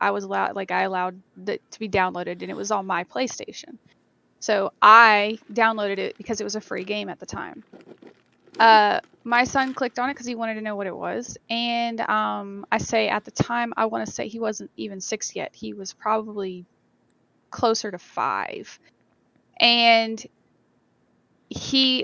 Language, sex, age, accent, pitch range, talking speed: English, female, 20-39, American, 200-240 Hz, 180 wpm